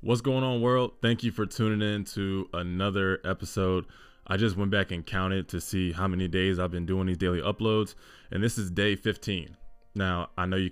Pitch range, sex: 90-115 Hz, male